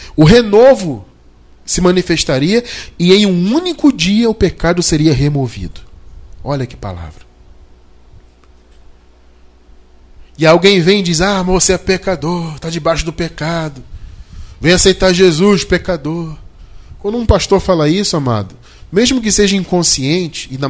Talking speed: 135 wpm